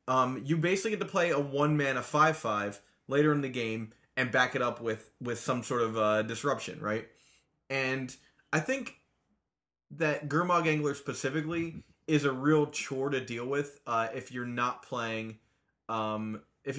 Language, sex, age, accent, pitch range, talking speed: English, male, 20-39, American, 115-150 Hz, 170 wpm